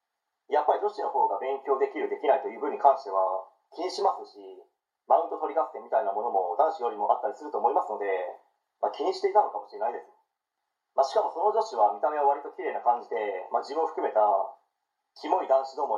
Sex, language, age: male, Japanese, 30-49